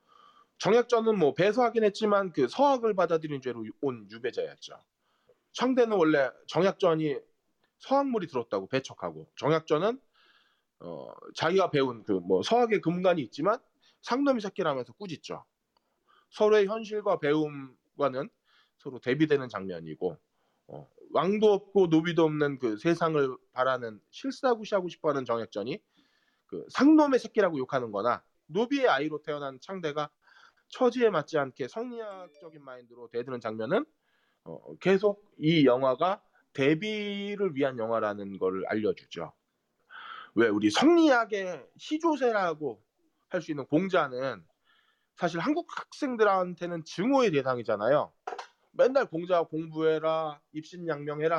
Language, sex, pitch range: Korean, male, 145-235 Hz